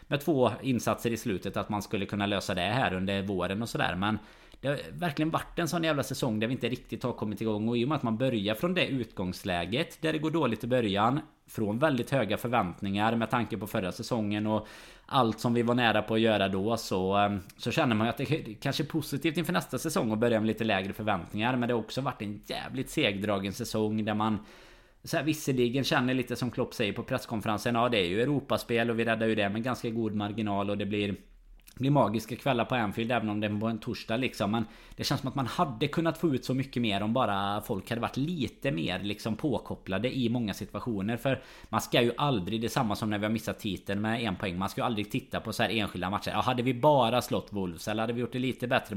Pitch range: 105-125 Hz